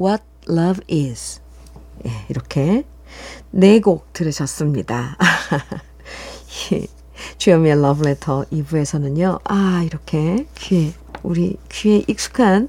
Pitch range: 165-235 Hz